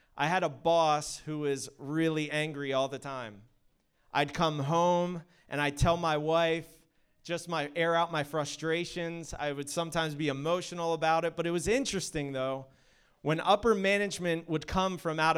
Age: 30-49